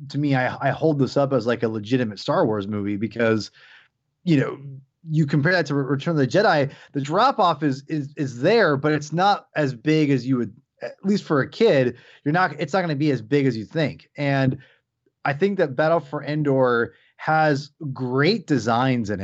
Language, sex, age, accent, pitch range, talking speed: English, male, 30-49, American, 130-155 Hz, 210 wpm